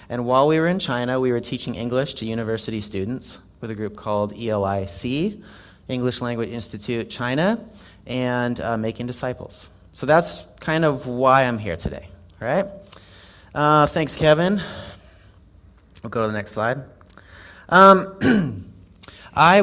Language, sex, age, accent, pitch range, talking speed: English, male, 30-49, American, 100-140 Hz, 145 wpm